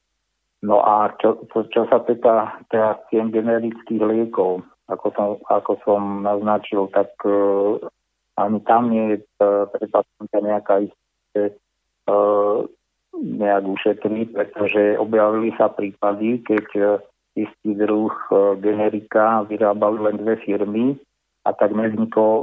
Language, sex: Slovak, male